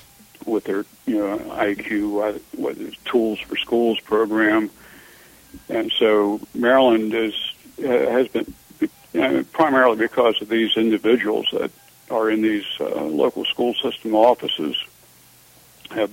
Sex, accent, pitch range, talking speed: male, American, 110-125 Hz, 125 wpm